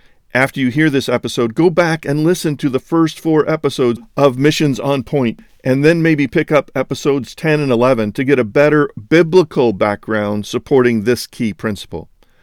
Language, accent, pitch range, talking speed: English, American, 125-155 Hz, 180 wpm